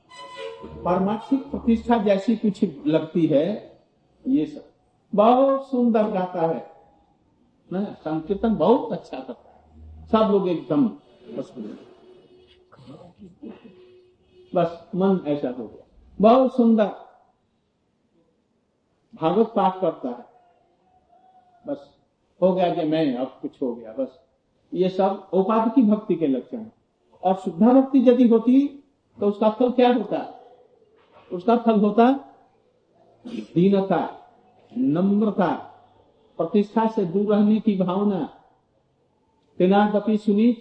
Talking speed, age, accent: 110 wpm, 50-69, native